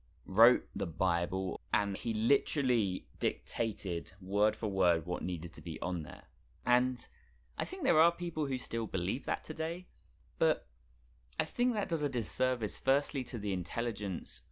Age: 20-39